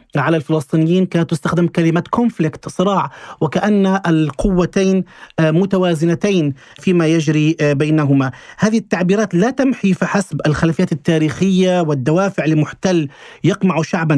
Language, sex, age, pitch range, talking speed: Arabic, male, 40-59, 160-200 Hz, 100 wpm